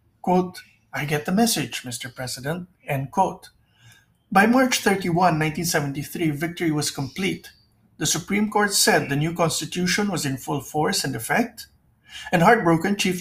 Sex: male